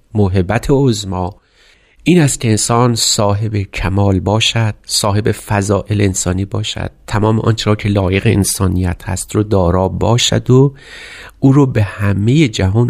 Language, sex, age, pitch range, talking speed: Persian, male, 30-49, 95-110 Hz, 130 wpm